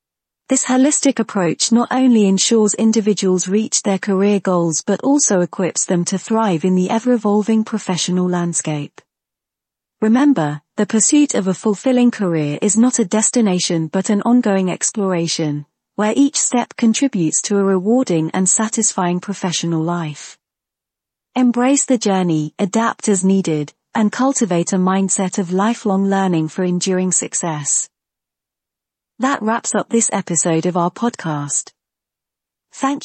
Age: 40-59